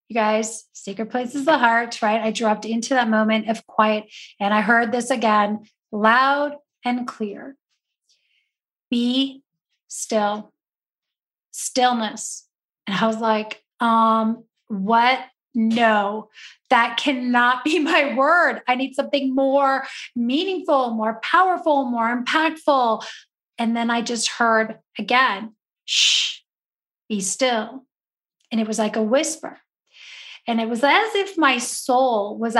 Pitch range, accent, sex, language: 220-270 Hz, American, female, English